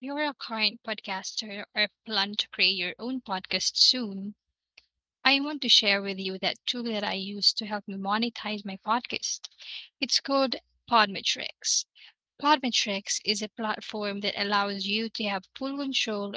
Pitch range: 200-240 Hz